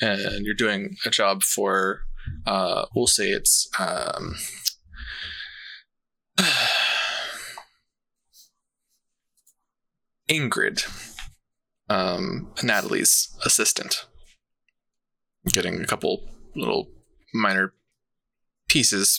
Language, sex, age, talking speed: English, male, 20-39, 65 wpm